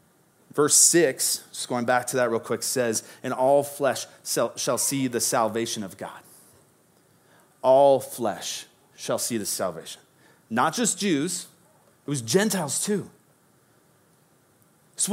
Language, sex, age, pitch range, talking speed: English, male, 30-49, 130-165 Hz, 130 wpm